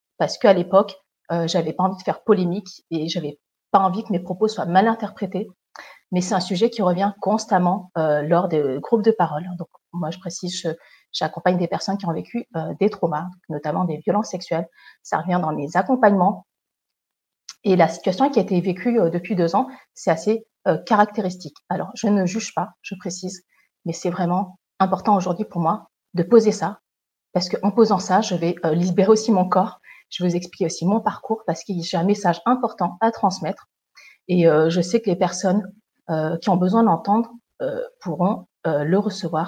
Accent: French